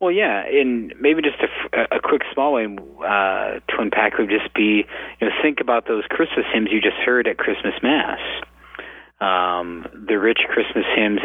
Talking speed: 180 wpm